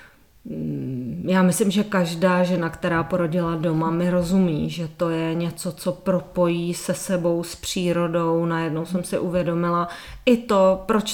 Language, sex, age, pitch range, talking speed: Czech, female, 30-49, 165-200 Hz, 145 wpm